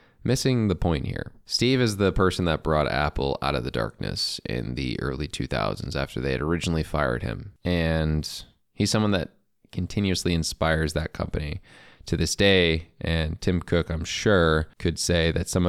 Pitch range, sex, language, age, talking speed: 80-95 Hz, male, English, 20-39, 170 wpm